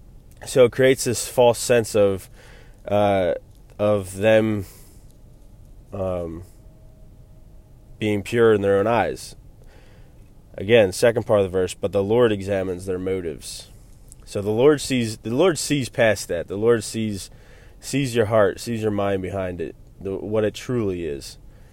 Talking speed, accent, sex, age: 145 wpm, American, male, 20-39